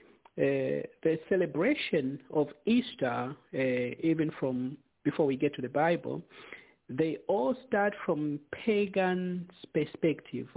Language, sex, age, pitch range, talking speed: English, male, 50-69, 140-185 Hz, 115 wpm